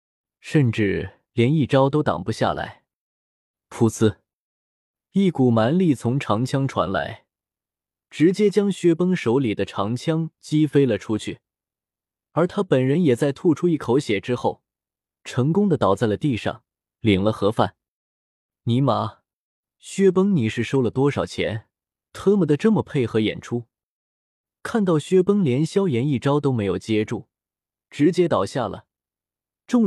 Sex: male